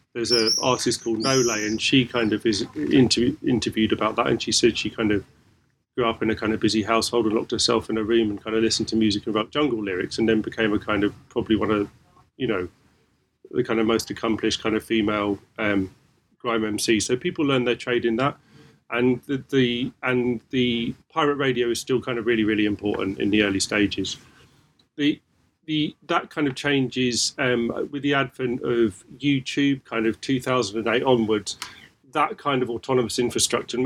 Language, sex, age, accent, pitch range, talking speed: English, male, 30-49, British, 110-130 Hz, 200 wpm